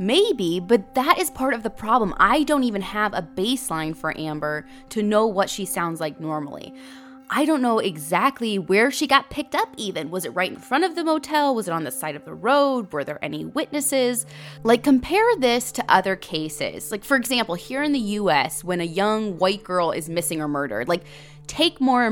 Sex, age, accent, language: female, 20-39, American, English